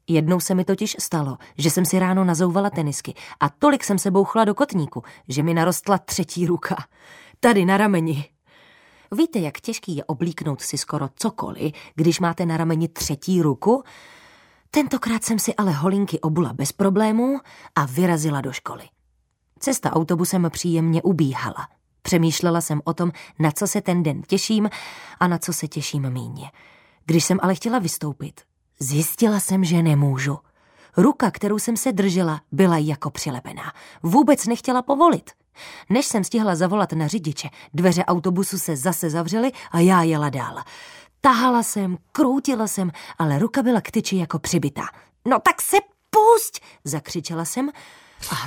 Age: 20-39